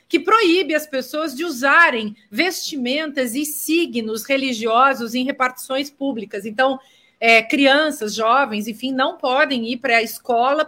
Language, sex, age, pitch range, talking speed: Portuguese, female, 40-59, 245-310 Hz, 130 wpm